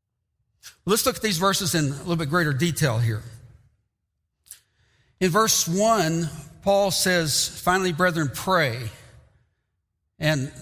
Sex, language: male, English